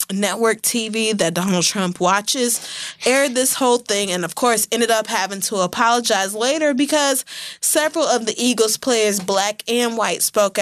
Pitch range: 180-235 Hz